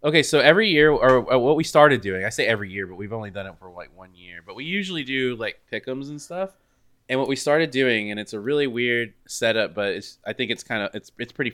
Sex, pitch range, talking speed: male, 100-130 Hz, 270 wpm